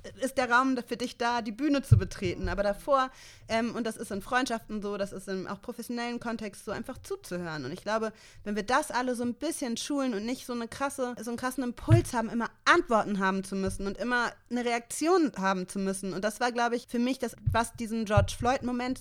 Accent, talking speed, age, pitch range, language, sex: German, 225 wpm, 30-49, 195-240 Hz, German, female